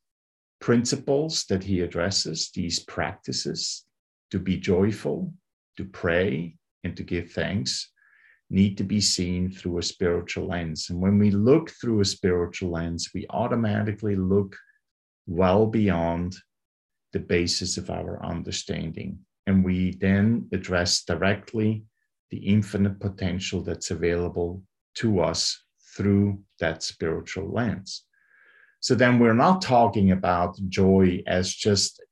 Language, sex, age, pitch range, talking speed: English, male, 50-69, 90-110 Hz, 125 wpm